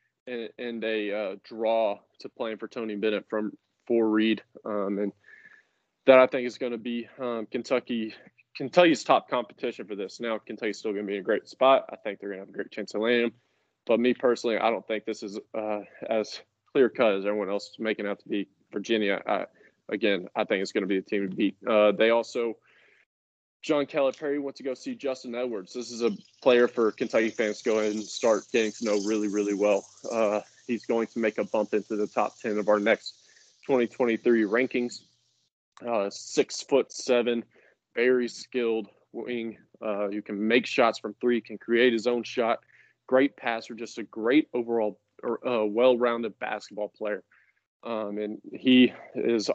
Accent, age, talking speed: American, 20-39, 190 wpm